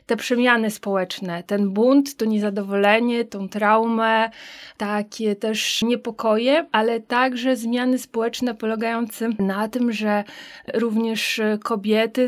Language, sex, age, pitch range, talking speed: Polish, female, 20-39, 210-235 Hz, 110 wpm